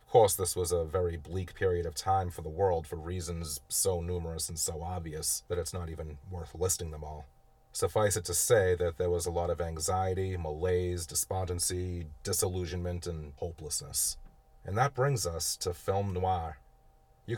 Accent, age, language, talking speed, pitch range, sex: American, 30-49, English, 180 wpm, 85-100 Hz, male